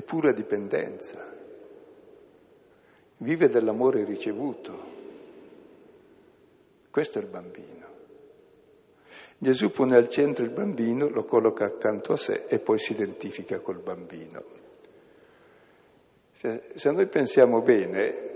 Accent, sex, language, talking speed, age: native, male, Italian, 100 wpm, 60-79